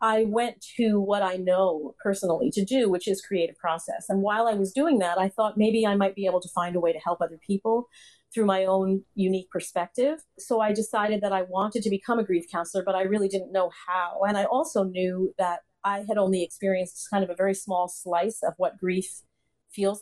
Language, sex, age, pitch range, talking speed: English, female, 40-59, 180-210 Hz, 225 wpm